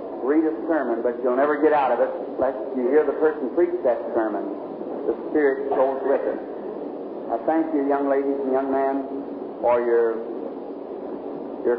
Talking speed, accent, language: 175 wpm, American, English